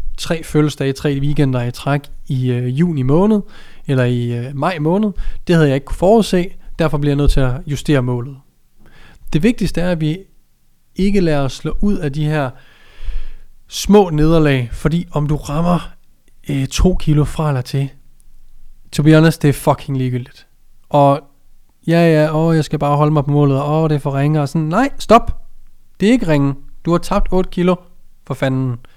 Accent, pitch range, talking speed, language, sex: native, 135-170 Hz, 190 wpm, Danish, male